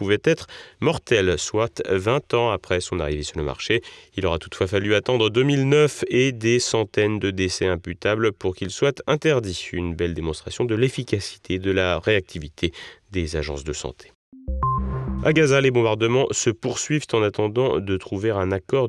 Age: 30-49